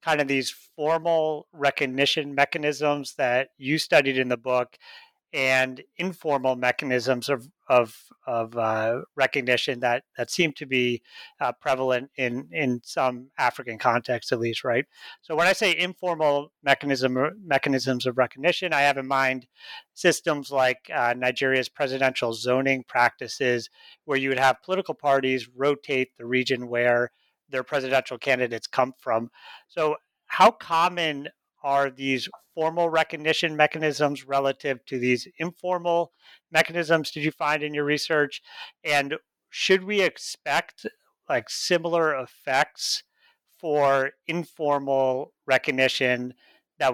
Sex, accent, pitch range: male, American, 125-155 Hz